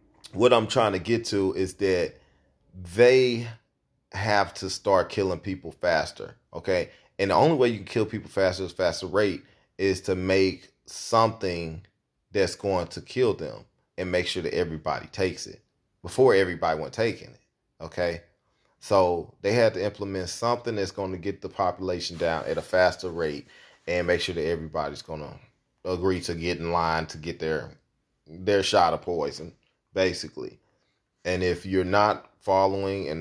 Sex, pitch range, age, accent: male, 90-110 Hz, 30-49, American